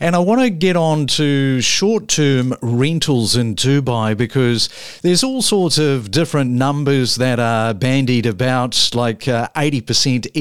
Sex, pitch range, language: male, 125-150 Hz, English